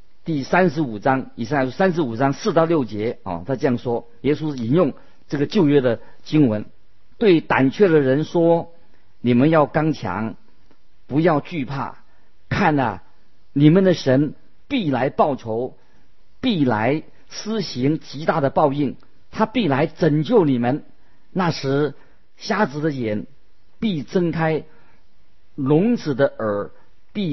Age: 50-69